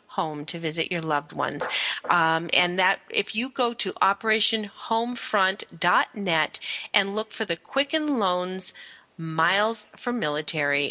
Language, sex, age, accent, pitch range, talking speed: English, female, 40-59, American, 165-225 Hz, 135 wpm